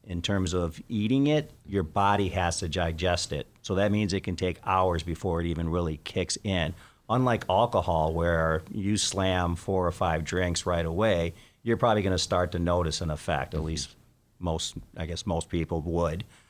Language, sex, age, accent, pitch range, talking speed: English, male, 40-59, American, 85-105 Hz, 185 wpm